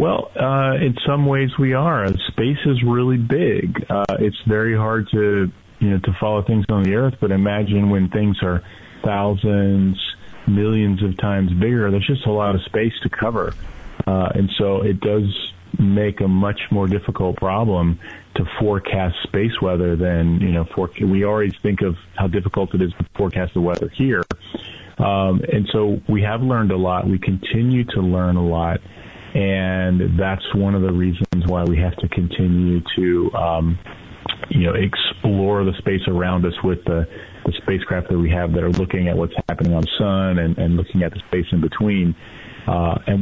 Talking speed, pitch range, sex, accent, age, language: 185 wpm, 90-105 Hz, male, American, 40-59, English